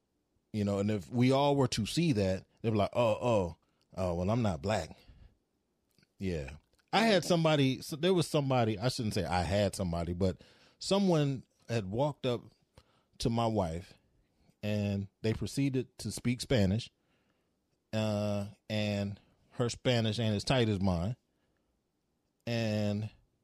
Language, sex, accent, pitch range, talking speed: English, male, American, 100-140 Hz, 150 wpm